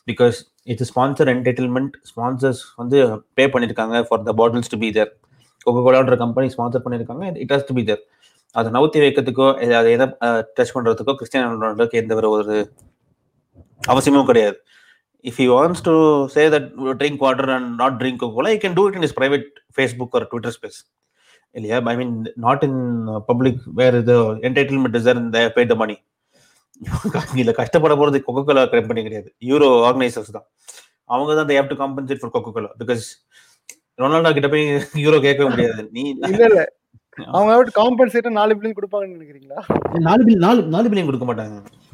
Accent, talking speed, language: native, 180 wpm, Tamil